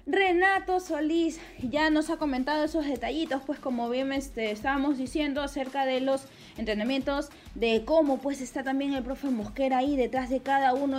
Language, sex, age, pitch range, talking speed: Spanish, female, 20-39, 255-320 Hz, 170 wpm